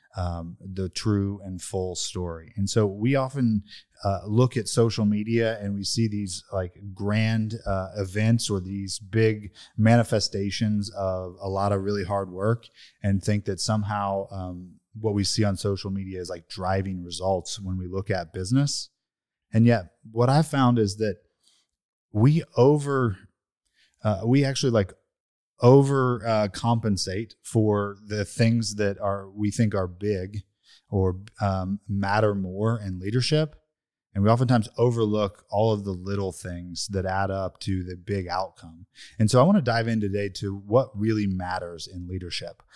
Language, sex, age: English, male, 30-49